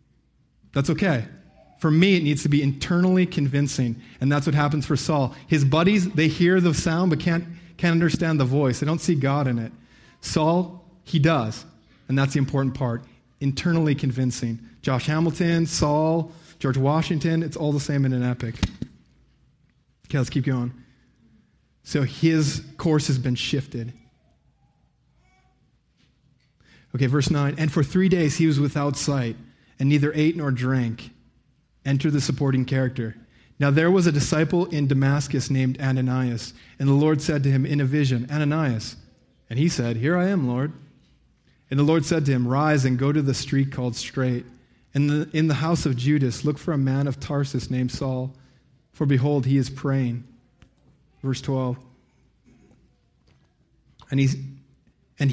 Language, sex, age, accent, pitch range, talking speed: English, male, 30-49, American, 130-155 Hz, 165 wpm